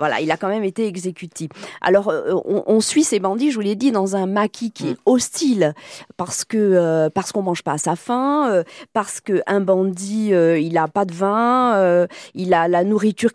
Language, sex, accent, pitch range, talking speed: French, female, French, 185-240 Hz, 220 wpm